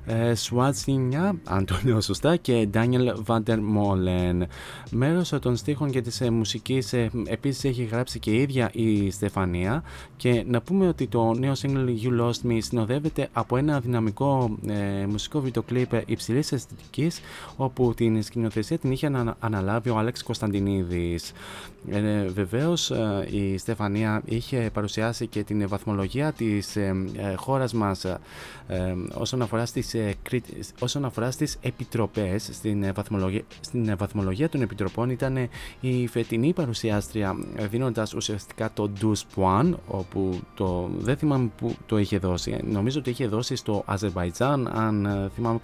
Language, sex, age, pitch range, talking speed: Greek, male, 20-39, 105-125 Hz, 145 wpm